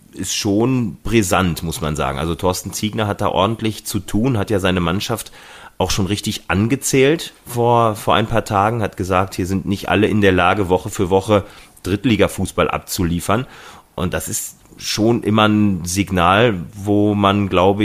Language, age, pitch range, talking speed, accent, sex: German, 30-49, 95-110 Hz, 170 wpm, German, male